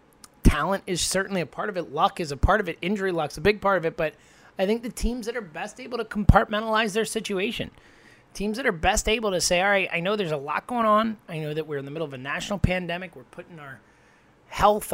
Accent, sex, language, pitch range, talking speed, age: American, male, English, 145-200 Hz, 255 wpm, 30-49